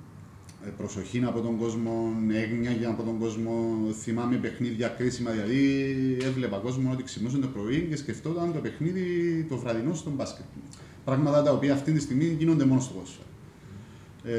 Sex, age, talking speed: male, 30-49, 150 wpm